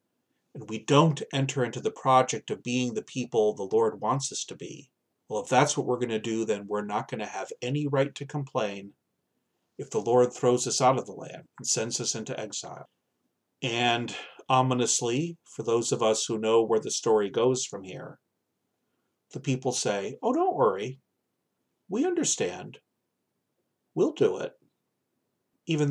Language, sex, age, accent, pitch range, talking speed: English, male, 40-59, American, 120-150 Hz, 175 wpm